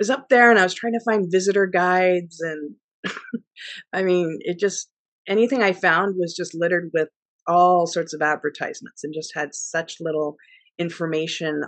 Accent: American